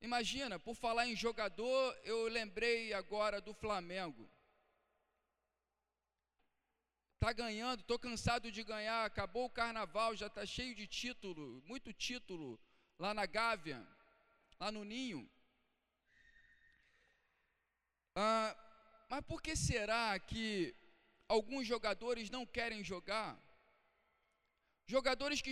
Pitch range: 215-265 Hz